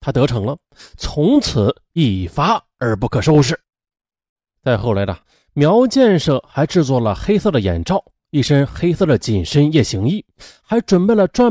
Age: 30-49